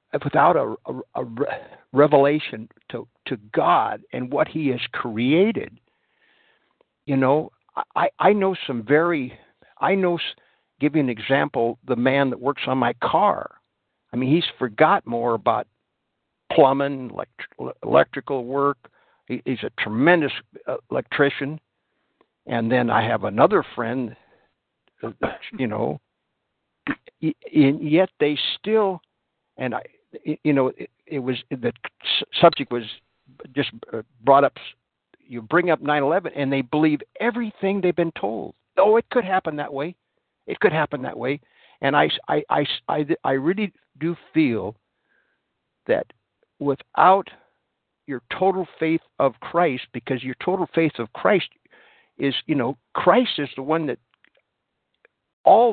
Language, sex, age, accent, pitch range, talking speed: English, male, 60-79, American, 135-175 Hz, 135 wpm